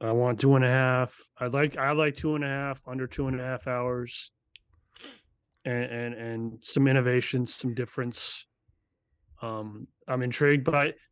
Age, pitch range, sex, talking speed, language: 30-49, 125-150 Hz, male, 175 wpm, English